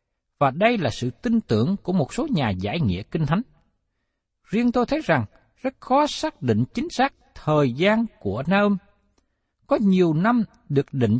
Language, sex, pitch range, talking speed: Vietnamese, male, 140-225 Hz, 180 wpm